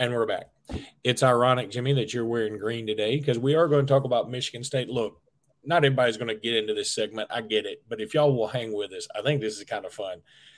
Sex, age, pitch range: male, 40-59, 120-150 Hz